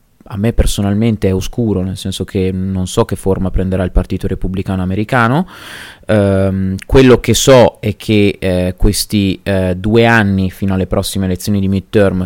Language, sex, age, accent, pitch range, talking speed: Italian, male, 20-39, native, 95-110 Hz, 165 wpm